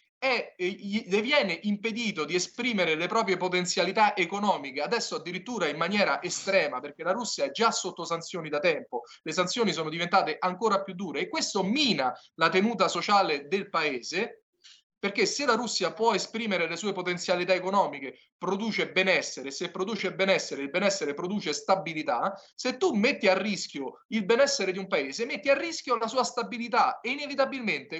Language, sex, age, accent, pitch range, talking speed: Italian, male, 30-49, native, 185-240 Hz, 160 wpm